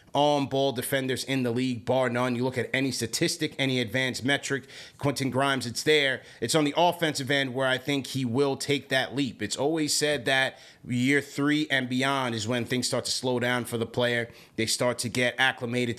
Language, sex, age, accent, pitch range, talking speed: English, male, 30-49, American, 120-140 Hz, 210 wpm